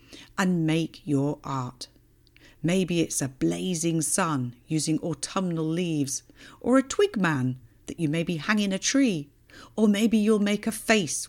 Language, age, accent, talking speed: English, 50-69, British, 155 wpm